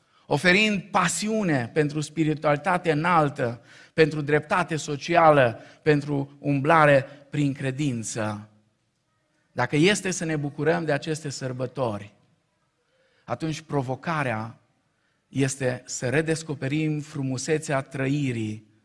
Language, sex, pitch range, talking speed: Romanian, male, 115-145 Hz, 85 wpm